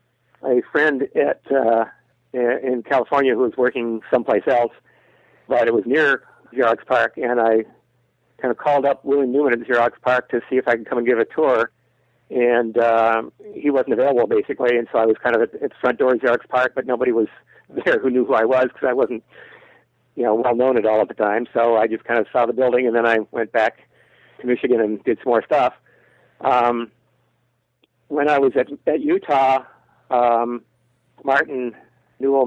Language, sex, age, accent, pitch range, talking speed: English, male, 60-79, American, 115-130 Hz, 200 wpm